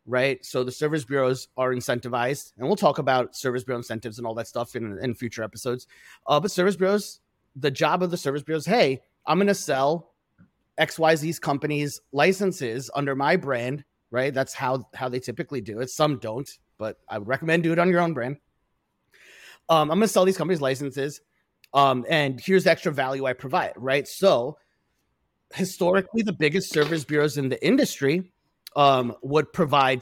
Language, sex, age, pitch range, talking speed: English, male, 30-49, 130-175 Hz, 180 wpm